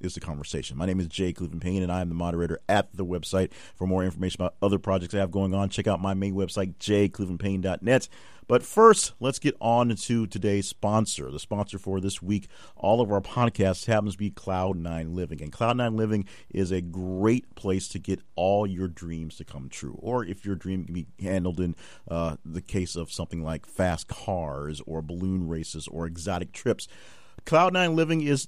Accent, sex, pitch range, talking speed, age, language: American, male, 90-115 Hz, 200 wpm, 40-59, English